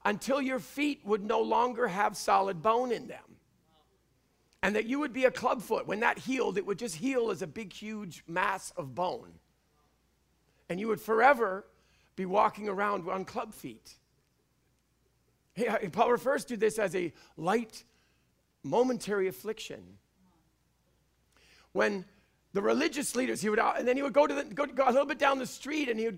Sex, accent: male, American